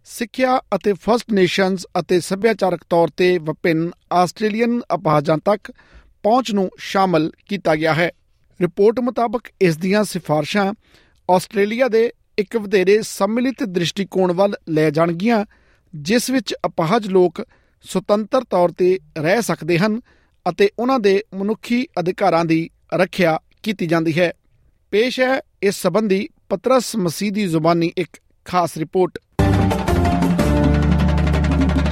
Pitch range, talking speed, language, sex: 165-215 Hz, 95 wpm, Punjabi, male